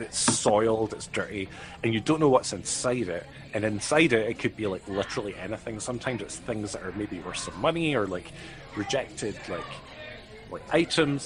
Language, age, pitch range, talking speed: English, 30-49, 110-145 Hz, 185 wpm